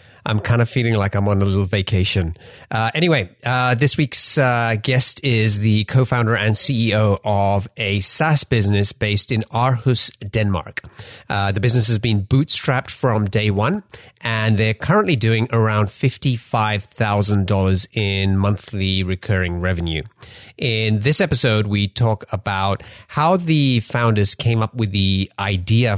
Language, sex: English, male